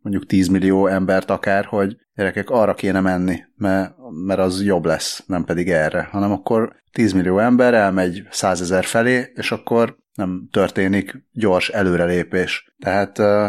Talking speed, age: 145 wpm, 30-49